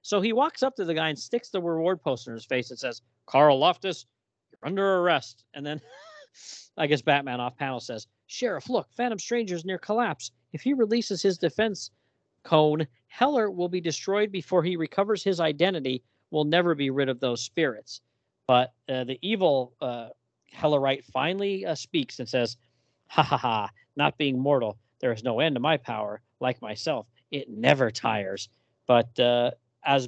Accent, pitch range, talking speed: American, 120-185 Hz, 180 wpm